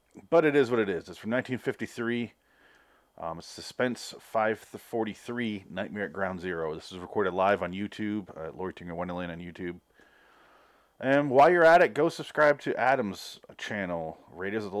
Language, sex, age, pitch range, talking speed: English, male, 30-49, 100-125 Hz, 165 wpm